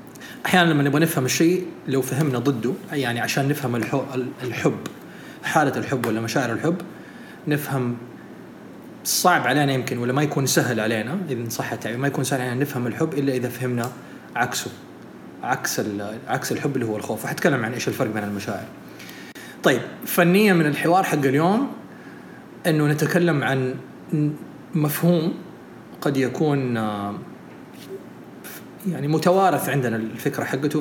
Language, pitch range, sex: Arabic, 125-165 Hz, male